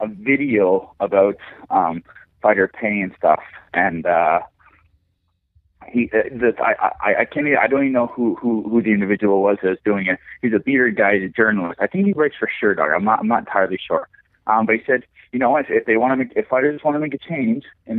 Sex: male